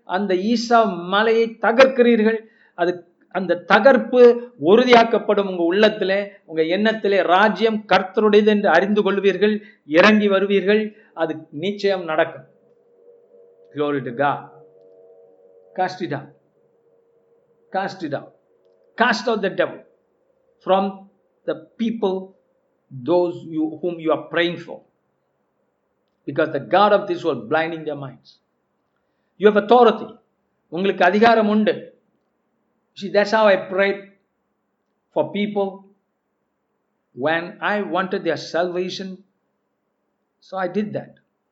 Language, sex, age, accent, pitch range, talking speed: Tamil, male, 50-69, native, 180-225 Hz, 65 wpm